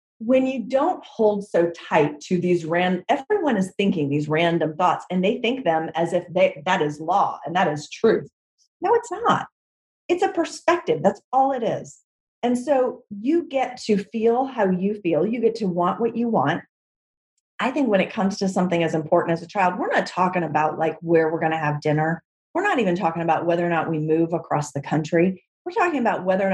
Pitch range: 170-230 Hz